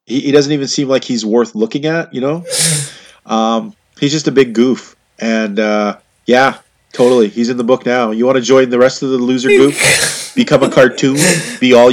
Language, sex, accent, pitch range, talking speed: English, male, American, 120-170 Hz, 205 wpm